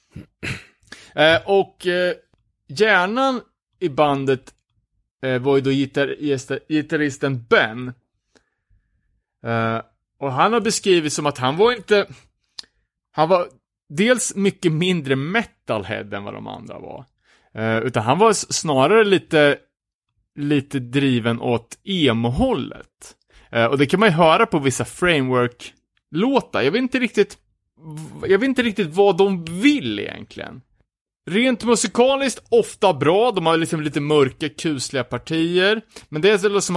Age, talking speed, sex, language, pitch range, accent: 30-49, 135 wpm, male, Swedish, 115-185 Hz, Norwegian